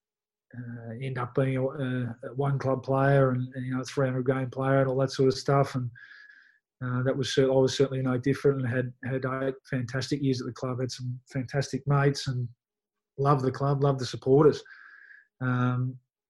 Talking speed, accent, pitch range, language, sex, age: 195 wpm, Australian, 125-140 Hz, English, male, 20-39